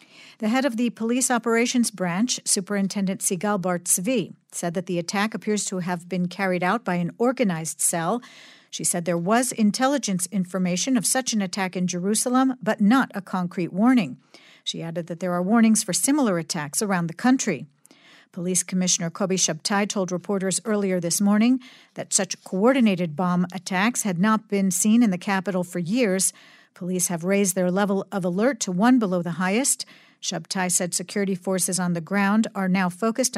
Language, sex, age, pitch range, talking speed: English, female, 50-69, 180-220 Hz, 175 wpm